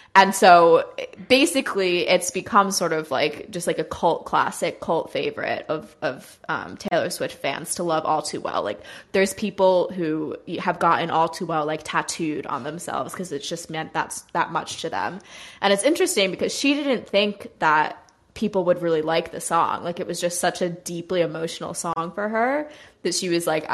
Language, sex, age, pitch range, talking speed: English, female, 20-39, 160-185 Hz, 195 wpm